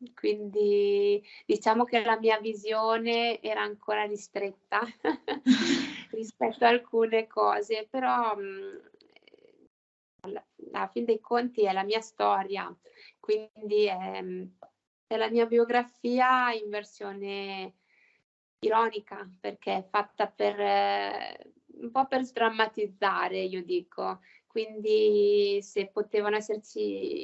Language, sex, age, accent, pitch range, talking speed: Italian, female, 20-39, native, 205-240 Hz, 100 wpm